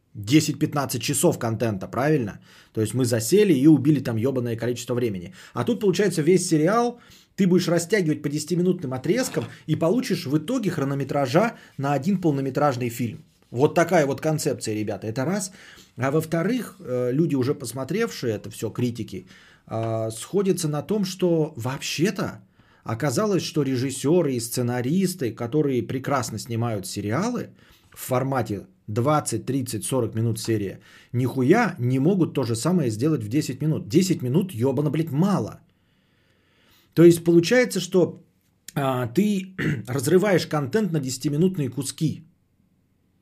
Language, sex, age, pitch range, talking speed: Bulgarian, male, 20-39, 120-175 Hz, 135 wpm